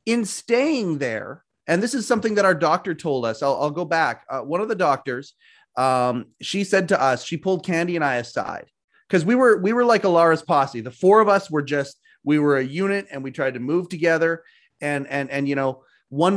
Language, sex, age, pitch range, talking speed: English, male, 30-49, 140-180 Hz, 230 wpm